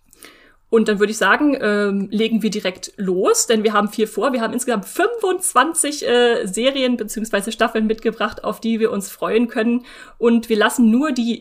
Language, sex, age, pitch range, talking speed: German, female, 30-49, 210-245 Hz, 185 wpm